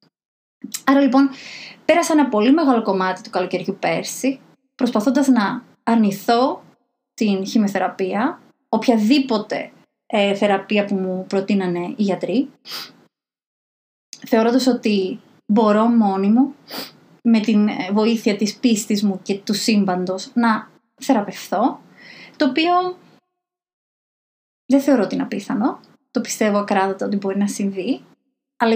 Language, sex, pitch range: Greek, female, 195-260 Hz